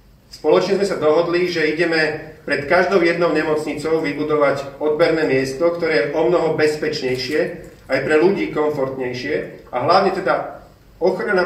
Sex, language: male, Slovak